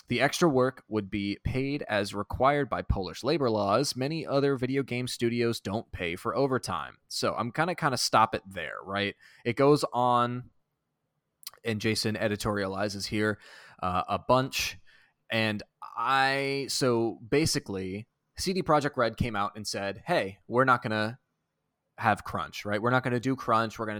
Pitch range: 100-125 Hz